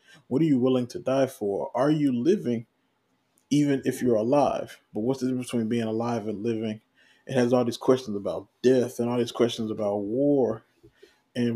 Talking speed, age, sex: 190 wpm, 20-39, male